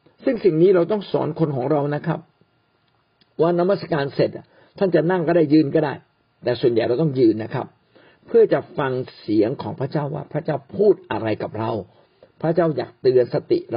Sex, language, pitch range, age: male, Thai, 130-180 Hz, 60-79